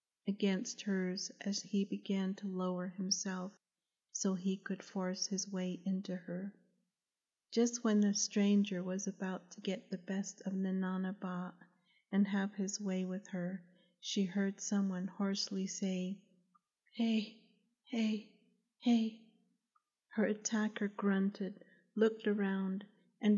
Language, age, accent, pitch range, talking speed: English, 40-59, American, 185-205 Hz, 125 wpm